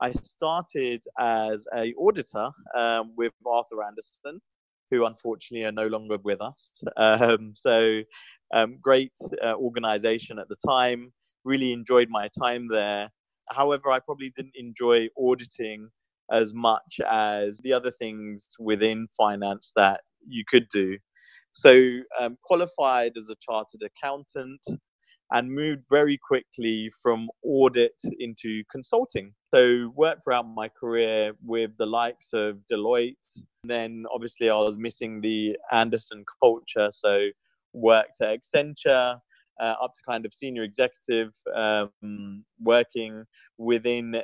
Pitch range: 110-130 Hz